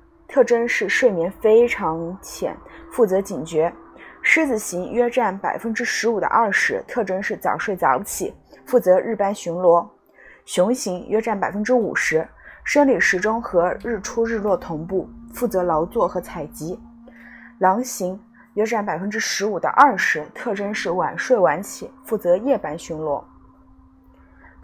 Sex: female